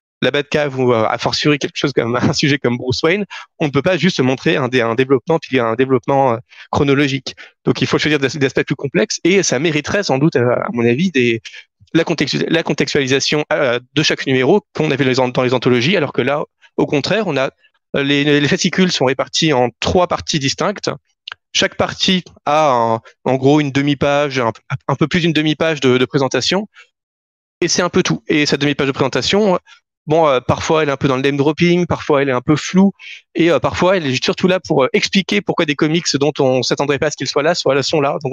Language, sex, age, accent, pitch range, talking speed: French, male, 30-49, French, 135-170 Hz, 220 wpm